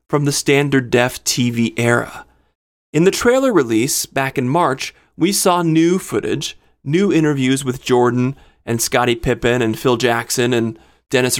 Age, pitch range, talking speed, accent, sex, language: 30-49, 130-200 Hz, 155 wpm, American, male, English